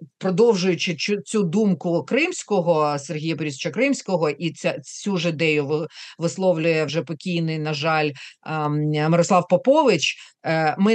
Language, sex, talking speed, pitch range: Ukrainian, female, 105 wpm, 165-245 Hz